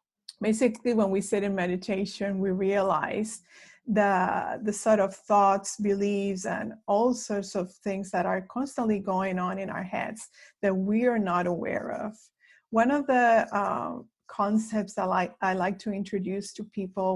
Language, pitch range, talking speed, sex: English, 195-220 Hz, 160 wpm, female